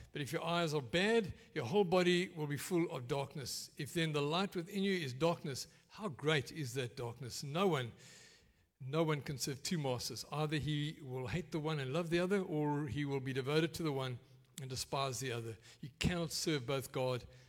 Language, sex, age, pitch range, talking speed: English, male, 60-79, 130-165 Hz, 215 wpm